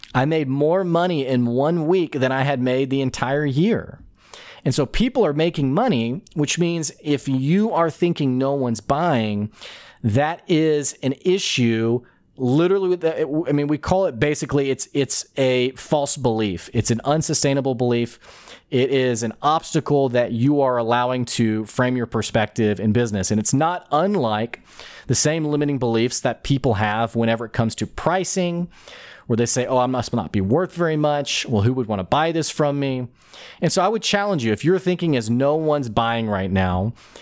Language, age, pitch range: English, 30-49, 120-160 Hz